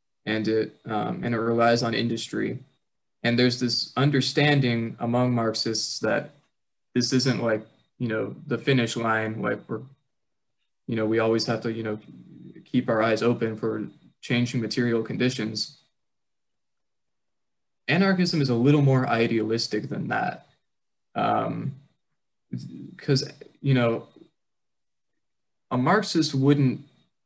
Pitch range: 110-130 Hz